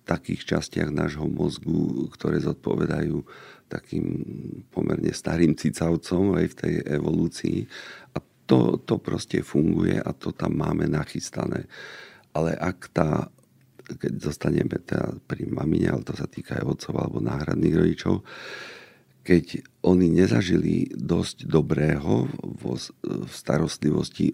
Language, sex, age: Slovak, male, 50-69